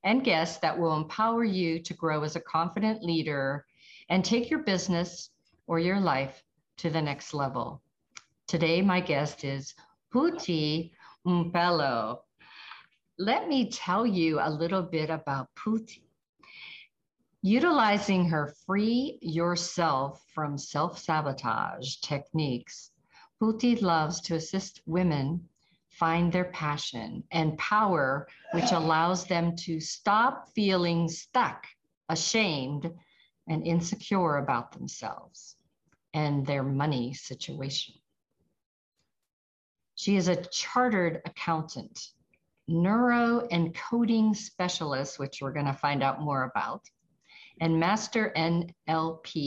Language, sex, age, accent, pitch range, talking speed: English, female, 50-69, American, 150-190 Hz, 110 wpm